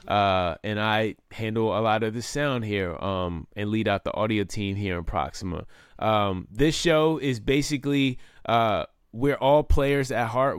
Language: English